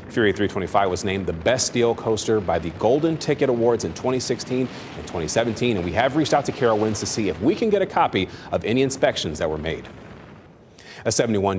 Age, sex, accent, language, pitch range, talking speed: 30-49, male, American, English, 100-130 Hz, 210 wpm